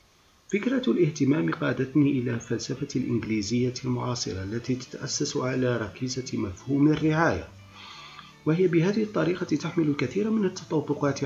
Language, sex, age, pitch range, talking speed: Arabic, male, 40-59, 120-165 Hz, 105 wpm